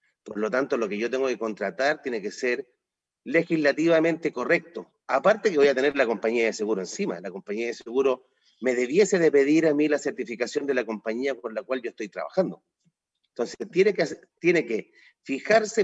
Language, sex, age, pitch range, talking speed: Spanish, male, 40-59, 120-170 Hz, 190 wpm